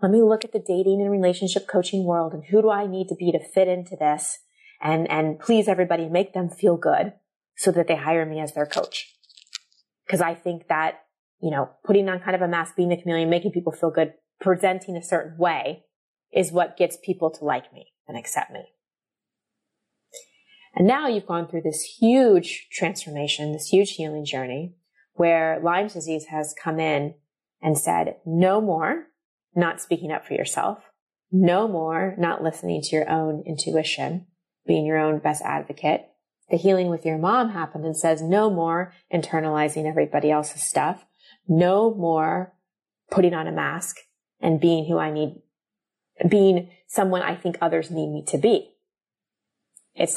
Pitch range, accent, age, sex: 160-190 Hz, American, 20-39, female